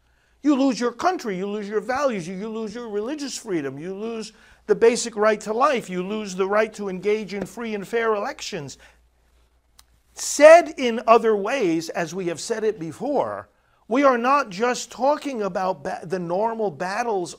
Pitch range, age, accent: 140-230 Hz, 50-69, American